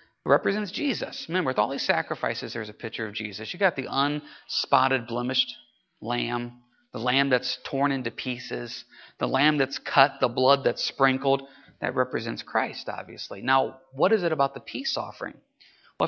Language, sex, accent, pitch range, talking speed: English, male, American, 135-225 Hz, 170 wpm